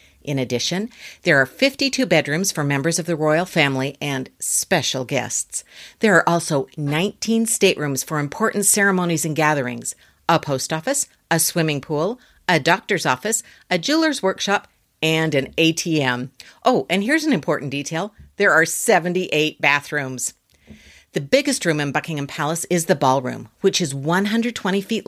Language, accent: English, American